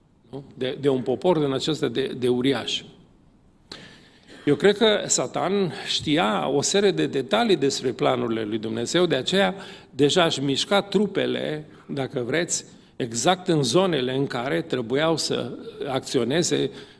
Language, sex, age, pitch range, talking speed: Romanian, male, 50-69, 130-160 Hz, 135 wpm